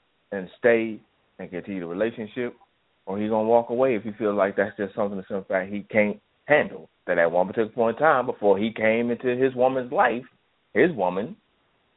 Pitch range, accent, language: 95-130 Hz, American, English